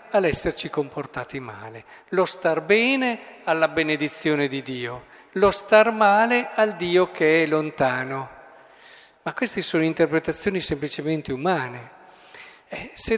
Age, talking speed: 50-69, 120 wpm